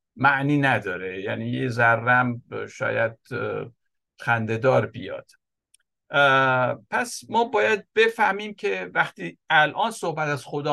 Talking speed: 100 wpm